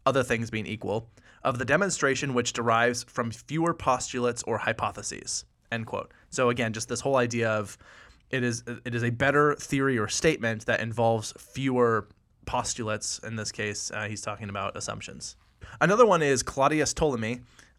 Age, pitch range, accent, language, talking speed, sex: 20-39, 110-135 Hz, American, English, 165 wpm, male